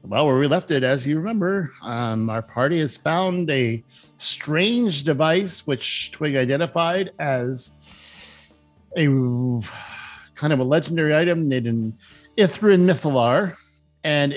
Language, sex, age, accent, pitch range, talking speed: English, male, 50-69, American, 115-155 Hz, 130 wpm